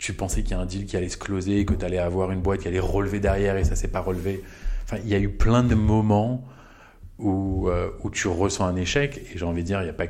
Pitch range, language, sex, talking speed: 85-105 Hz, French, male, 310 wpm